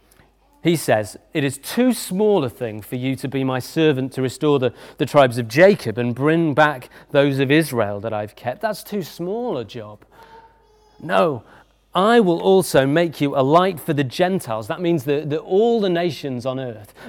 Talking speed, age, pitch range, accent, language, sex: 190 wpm, 40-59, 125-185 Hz, British, English, male